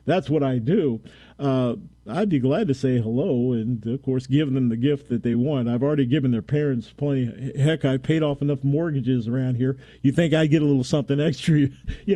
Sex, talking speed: male, 215 wpm